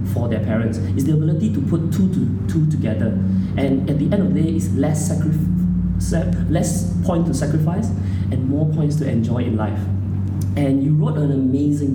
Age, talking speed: 20-39, 190 wpm